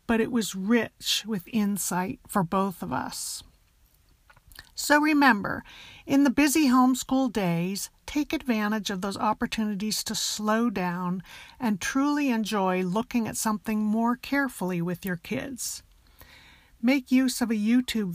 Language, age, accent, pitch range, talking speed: English, 50-69, American, 190-245 Hz, 135 wpm